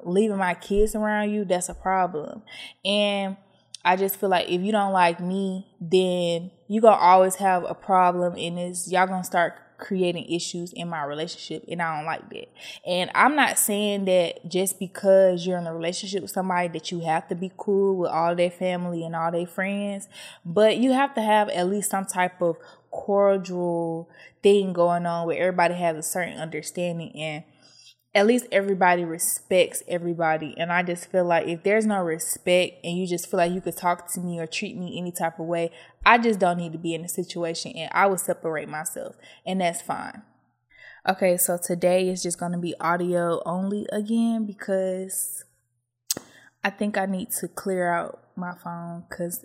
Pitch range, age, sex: 170-195 Hz, 20-39, female